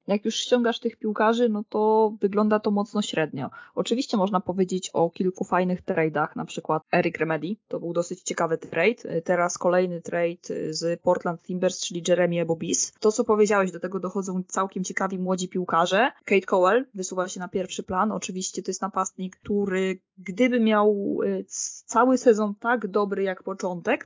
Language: Polish